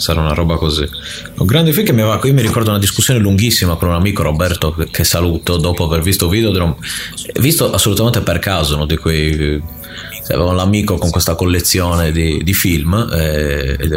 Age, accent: 30-49, native